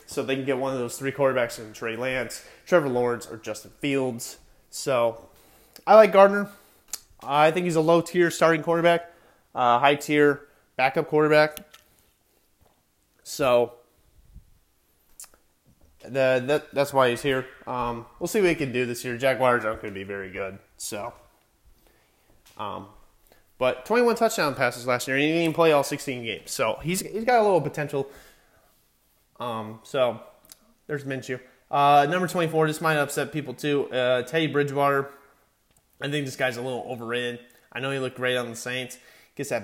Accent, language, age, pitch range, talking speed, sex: American, English, 20-39, 120-145 Hz, 170 wpm, male